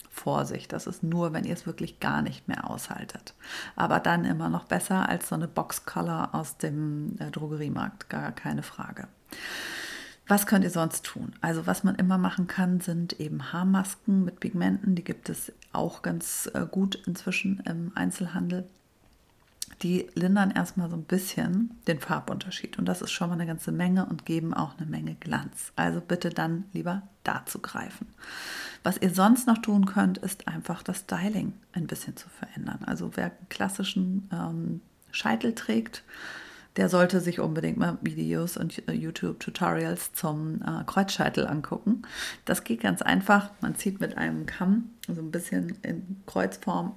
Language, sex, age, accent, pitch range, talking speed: German, female, 40-59, German, 160-195 Hz, 165 wpm